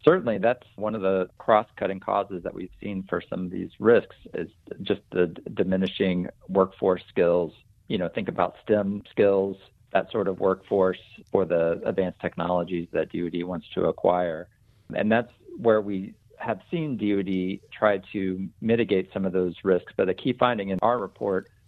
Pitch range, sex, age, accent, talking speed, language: 85-100 Hz, male, 50-69, American, 170 wpm, English